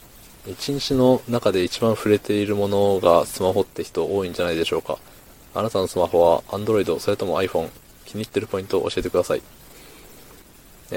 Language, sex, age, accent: Japanese, male, 20-39, native